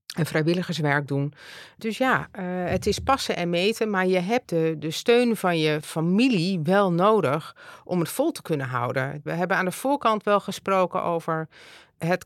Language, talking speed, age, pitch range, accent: Dutch, 180 wpm, 40-59, 165-200 Hz, Dutch